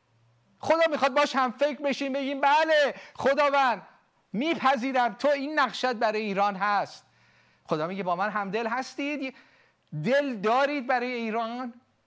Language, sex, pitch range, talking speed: Persian, male, 155-250 Hz, 135 wpm